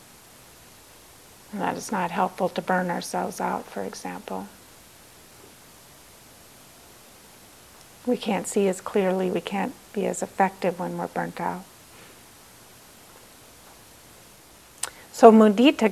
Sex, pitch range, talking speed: female, 180-220 Hz, 100 wpm